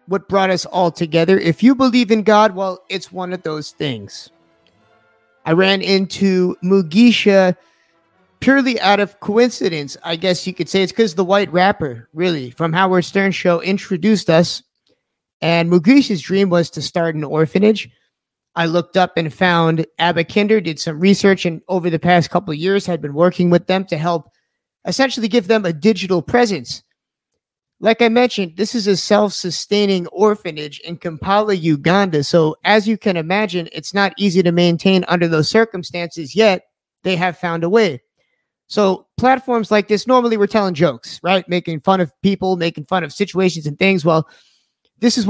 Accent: American